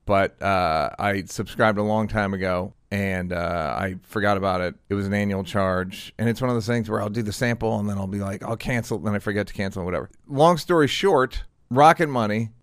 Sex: male